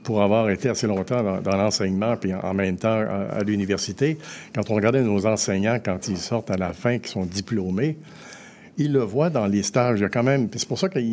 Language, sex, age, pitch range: French, male, 60-79, 95-120 Hz